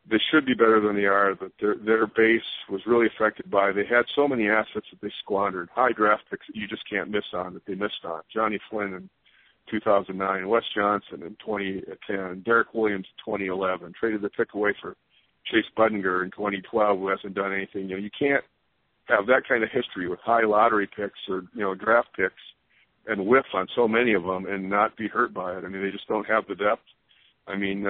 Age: 50-69